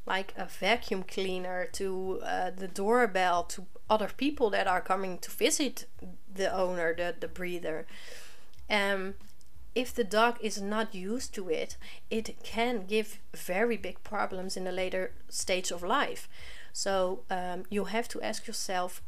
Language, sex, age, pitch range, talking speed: Dutch, female, 30-49, 180-225 Hz, 155 wpm